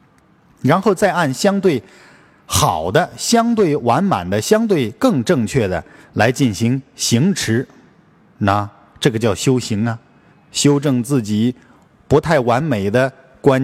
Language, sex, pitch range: Chinese, male, 105-140 Hz